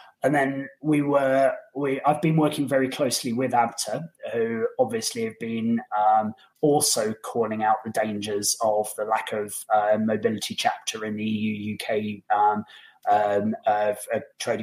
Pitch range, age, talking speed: 115-160 Hz, 20-39, 150 wpm